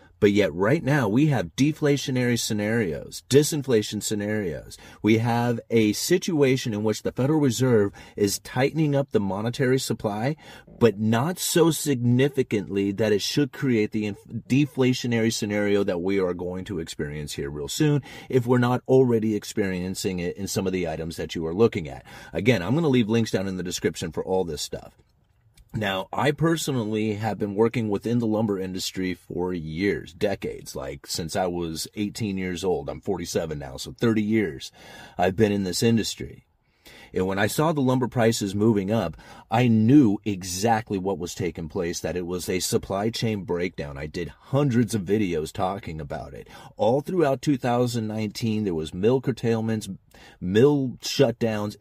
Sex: male